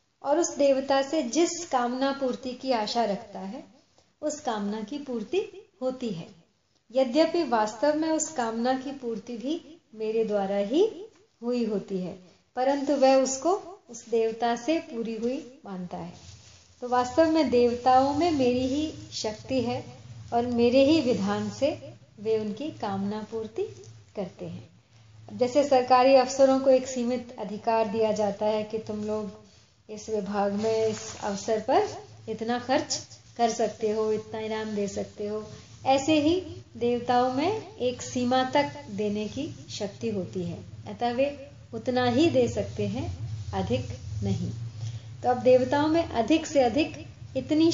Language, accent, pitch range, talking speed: Hindi, native, 215-275 Hz, 150 wpm